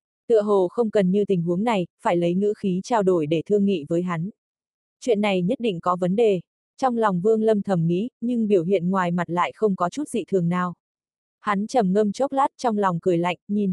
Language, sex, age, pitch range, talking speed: Vietnamese, female, 20-39, 180-225 Hz, 235 wpm